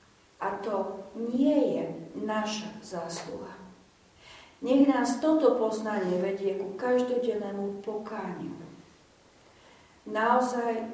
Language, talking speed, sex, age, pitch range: Slovak, 80 wpm, female, 40-59, 180-240 Hz